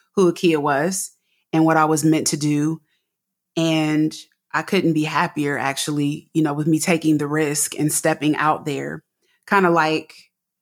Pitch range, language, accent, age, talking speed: 155-165 Hz, English, American, 20-39, 170 wpm